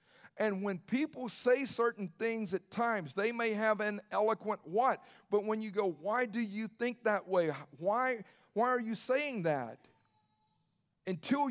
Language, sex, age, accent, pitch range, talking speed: English, male, 50-69, American, 145-200 Hz, 160 wpm